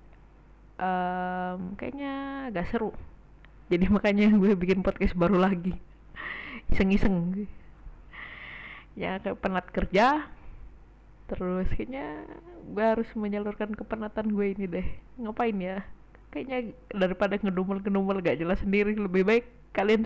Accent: native